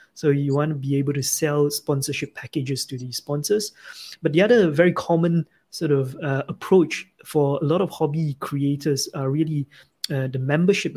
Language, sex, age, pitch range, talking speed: English, male, 20-39, 140-160 Hz, 180 wpm